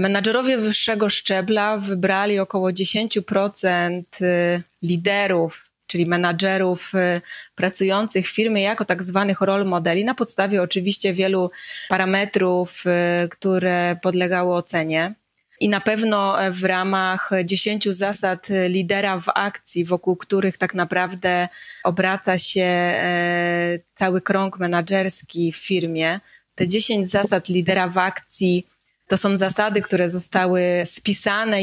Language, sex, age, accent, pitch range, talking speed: Polish, female, 20-39, native, 180-200 Hz, 110 wpm